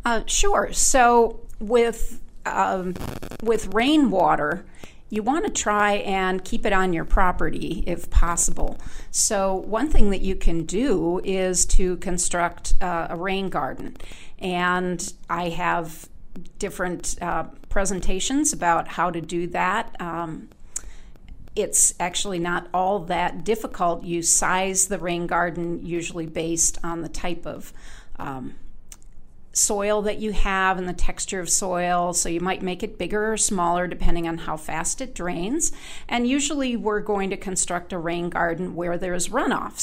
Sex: female